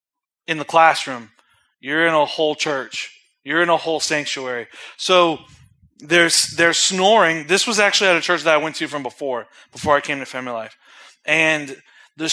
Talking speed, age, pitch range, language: 180 wpm, 20-39, 150-190 Hz, English